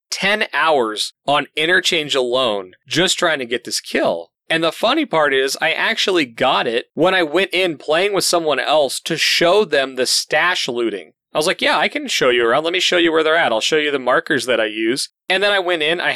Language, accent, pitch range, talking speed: English, American, 130-180 Hz, 240 wpm